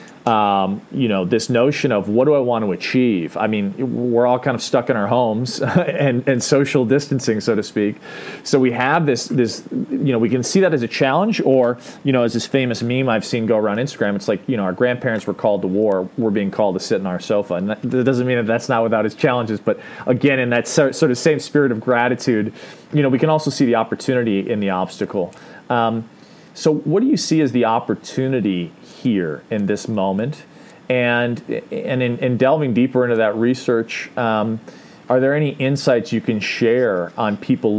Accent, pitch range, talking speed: American, 105-130 Hz, 215 wpm